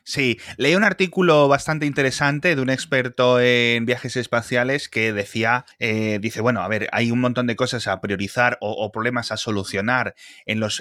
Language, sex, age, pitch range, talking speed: Spanish, male, 20-39, 105-125 Hz, 185 wpm